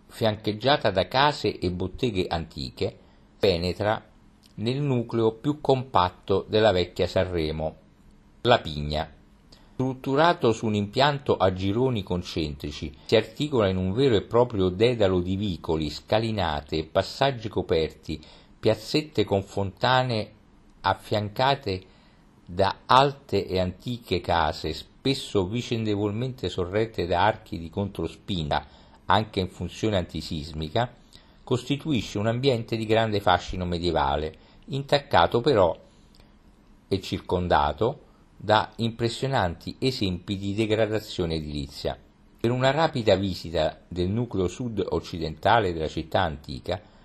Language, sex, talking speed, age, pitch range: Italian, male, 105 wpm, 50-69, 90-115 Hz